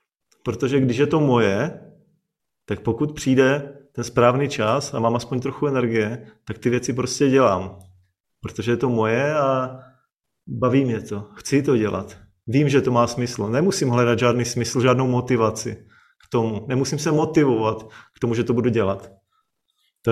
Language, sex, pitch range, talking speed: Czech, male, 115-140 Hz, 165 wpm